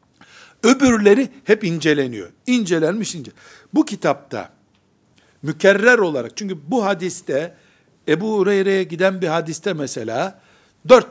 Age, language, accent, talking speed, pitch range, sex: 60-79, Turkish, native, 105 wpm, 170-235 Hz, male